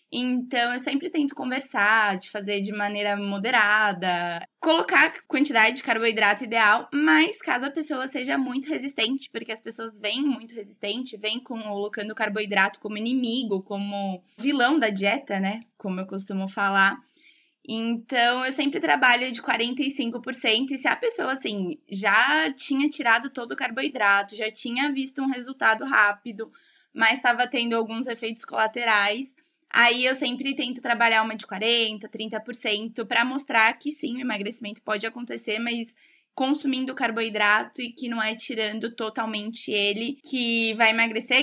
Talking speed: 150 wpm